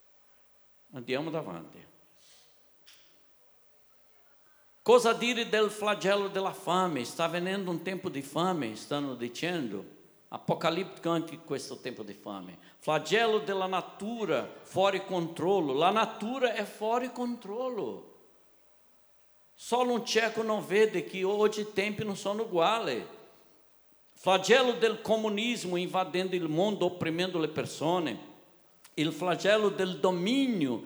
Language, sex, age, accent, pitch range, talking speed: Italian, male, 60-79, Brazilian, 155-195 Hz, 110 wpm